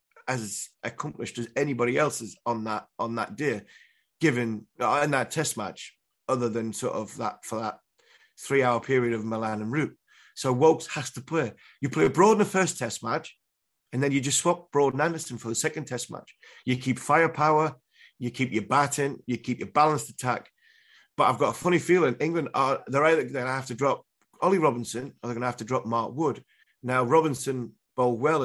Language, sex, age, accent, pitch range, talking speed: English, male, 30-49, British, 120-150 Hz, 210 wpm